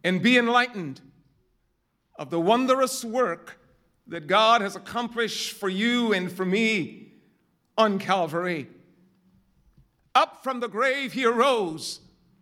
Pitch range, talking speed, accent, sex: 195-245 Hz, 115 wpm, American, male